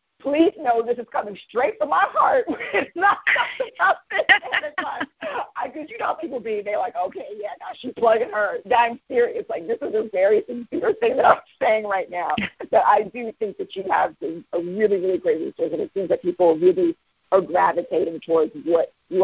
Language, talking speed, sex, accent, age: English, 205 wpm, female, American, 50-69